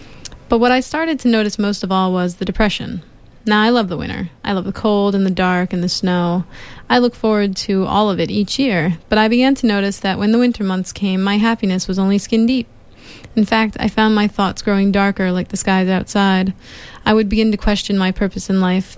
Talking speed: 235 wpm